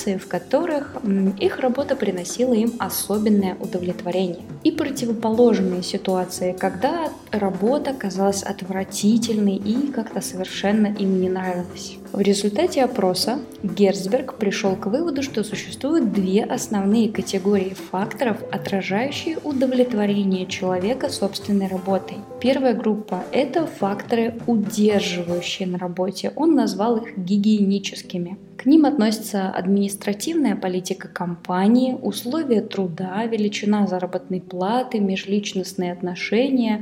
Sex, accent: female, native